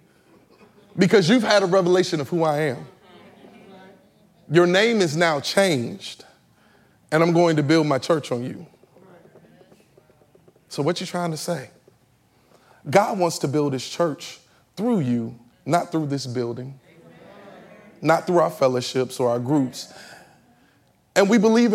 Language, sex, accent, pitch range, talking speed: English, male, American, 130-185 Hz, 140 wpm